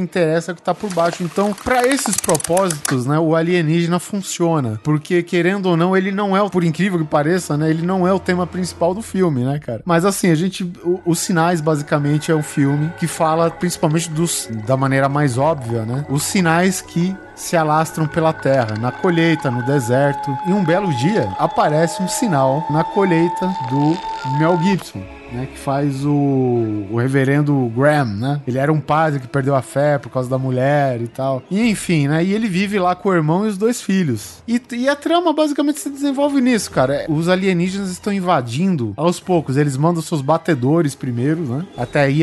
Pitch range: 140-185 Hz